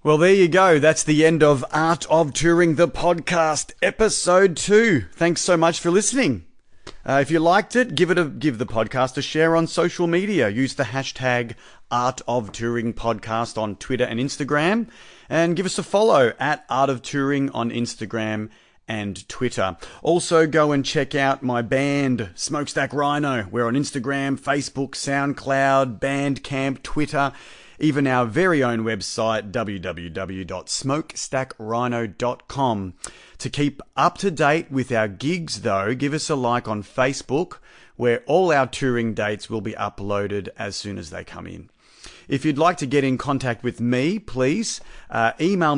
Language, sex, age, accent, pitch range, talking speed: English, male, 40-59, Australian, 115-155 Hz, 160 wpm